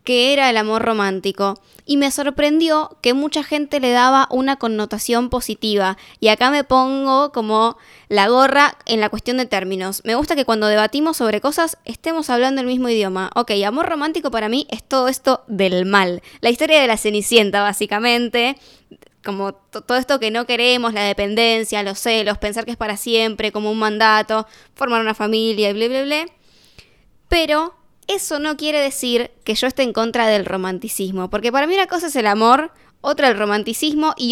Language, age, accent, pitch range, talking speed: Spanish, 10-29, Argentinian, 210-260 Hz, 185 wpm